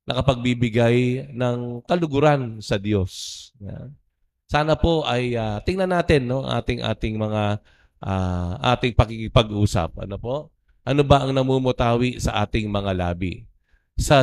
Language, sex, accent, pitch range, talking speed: Filipino, male, native, 100-130 Hz, 125 wpm